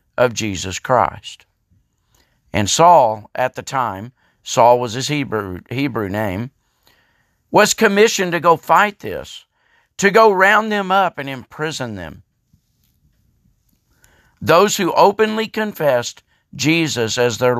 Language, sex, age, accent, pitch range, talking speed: English, male, 50-69, American, 115-190 Hz, 120 wpm